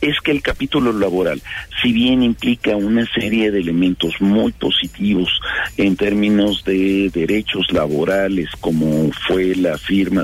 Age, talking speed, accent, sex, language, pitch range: 50-69, 135 wpm, Mexican, male, Spanish, 90-110 Hz